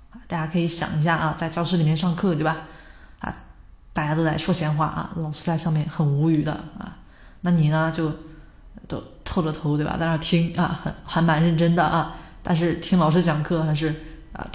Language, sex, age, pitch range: Chinese, female, 20-39, 155-185 Hz